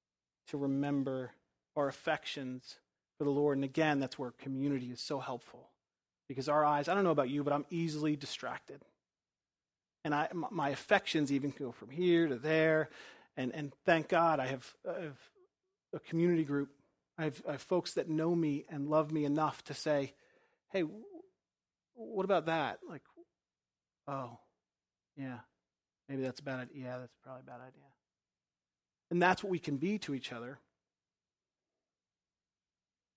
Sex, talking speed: male, 155 wpm